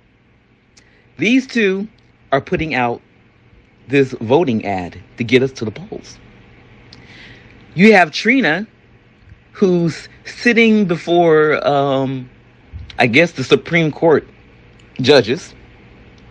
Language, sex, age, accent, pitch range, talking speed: English, male, 40-59, American, 120-160 Hz, 100 wpm